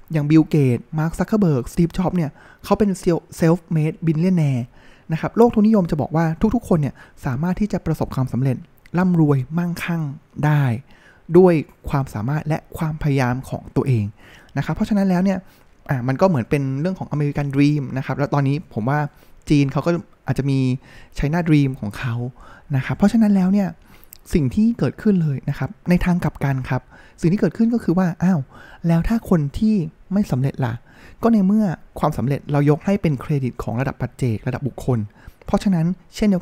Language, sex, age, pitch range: Thai, male, 20-39, 130-180 Hz